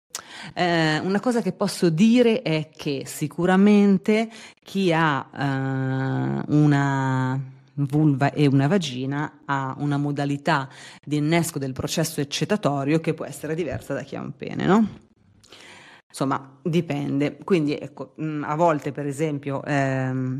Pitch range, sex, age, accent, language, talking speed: 145-165 Hz, female, 30-49, native, Italian, 130 wpm